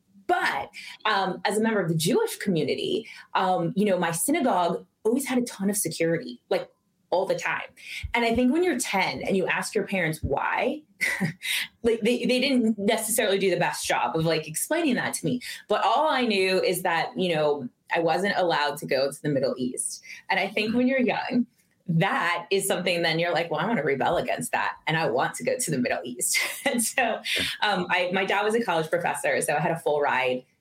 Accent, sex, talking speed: American, female, 220 wpm